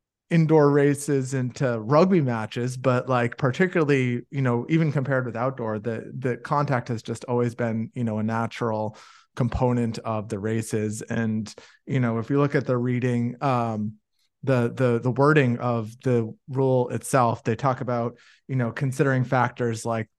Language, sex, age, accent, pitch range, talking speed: English, male, 30-49, American, 115-135 Hz, 165 wpm